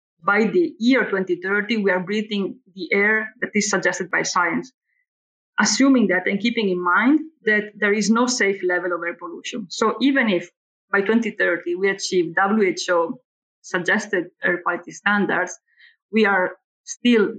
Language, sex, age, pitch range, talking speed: English, female, 20-39, 190-235 Hz, 150 wpm